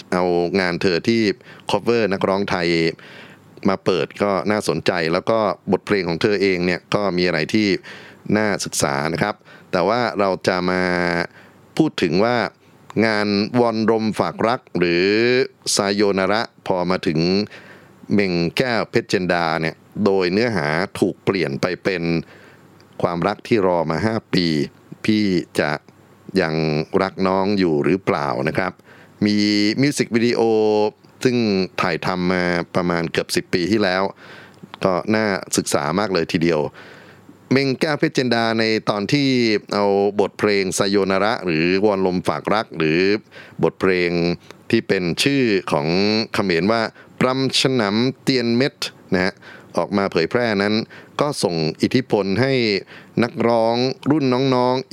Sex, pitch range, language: male, 90-115 Hz, Thai